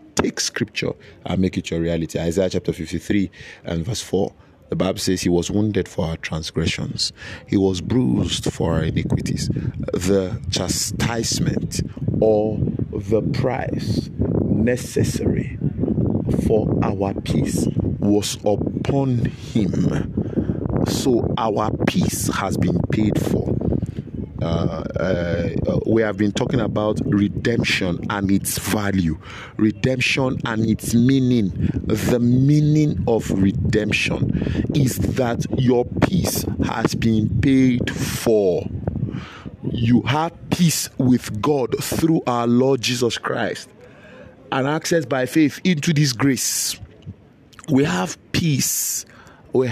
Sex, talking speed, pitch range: male, 115 wpm, 100-130 Hz